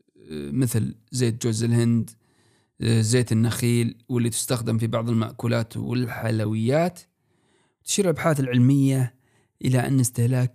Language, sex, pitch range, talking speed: Arabic, male, 115-135 Hz, 100 wpm